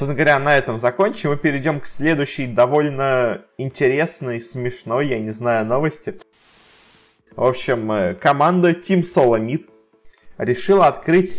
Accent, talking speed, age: native, 120 wpm, 20-39